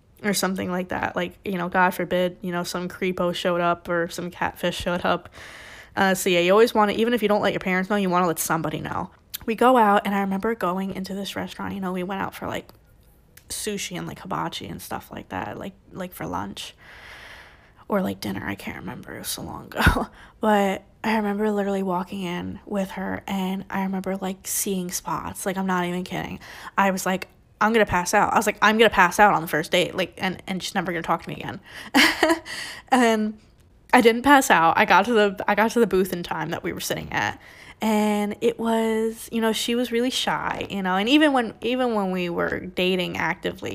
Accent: American